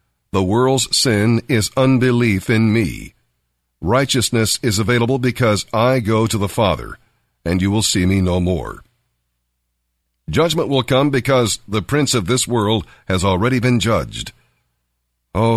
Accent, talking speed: American, 145 wpm